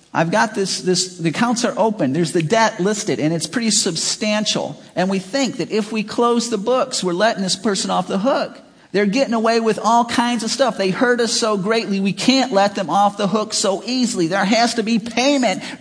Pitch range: 175-230 Hz